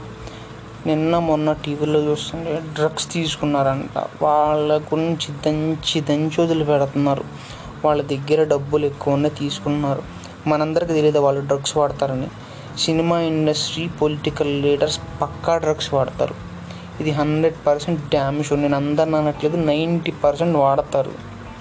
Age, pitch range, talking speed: 20-39, 140-155 Hz, 100 wpm